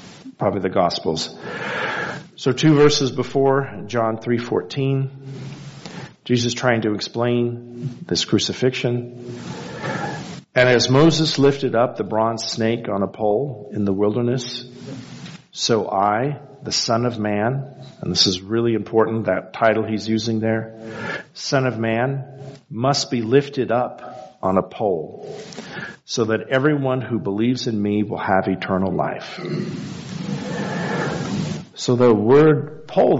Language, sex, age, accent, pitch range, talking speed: English, male, 50-69, American, 110-135 Hz, 130 wpm